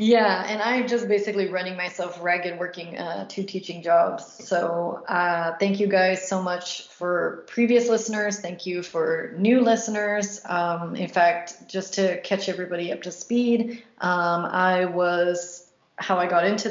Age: 30-49